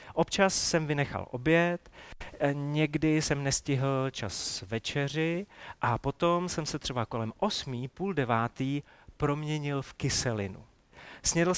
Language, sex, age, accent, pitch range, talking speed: Czech, male, 40-59, native, 120-160 Hz, 115 wpm